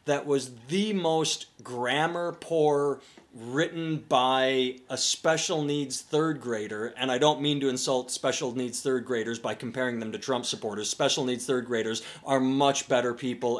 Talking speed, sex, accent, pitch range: 165 wpm, male, American, 125-160 Hz